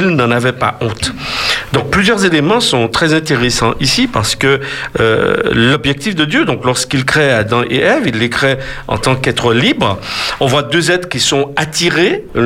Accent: French